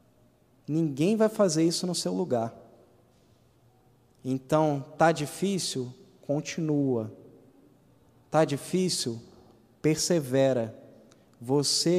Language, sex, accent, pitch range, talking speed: Portuguese, male, Brazilian, 130-175 Hz, 75 wpm